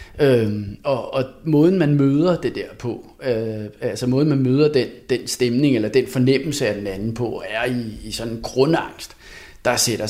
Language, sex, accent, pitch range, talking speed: Danish, male, native, 115-145 Hz, 190 wpm